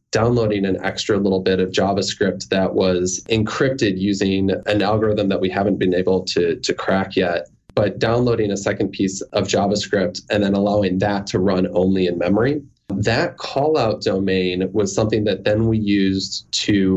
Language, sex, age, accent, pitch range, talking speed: English, male, 20-39, American, 95-110 Hz, 170 wpm